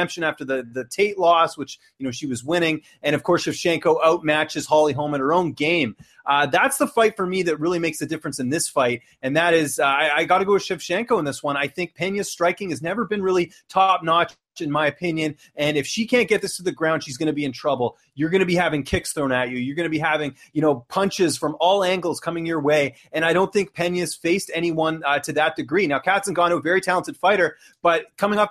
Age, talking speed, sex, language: 30-49, 255 wpm, male, English